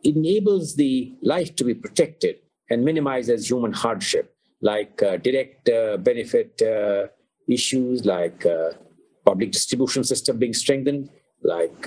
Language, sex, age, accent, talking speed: English, male, 50-69, Indian, 125 wpm